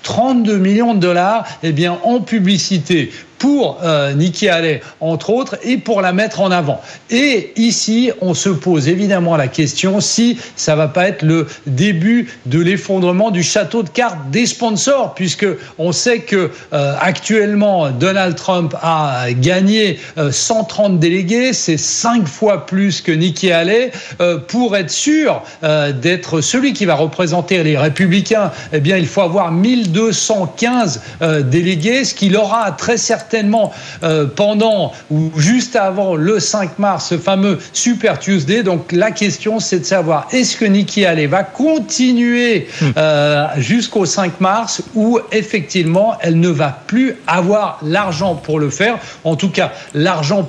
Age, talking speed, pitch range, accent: 40-59, 155 wpm, 165-220 Hz, French